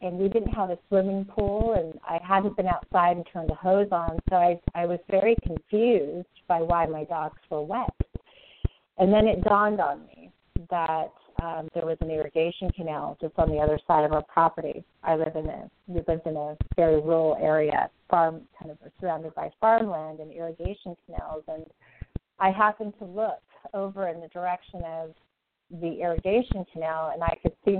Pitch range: 160-195 Hz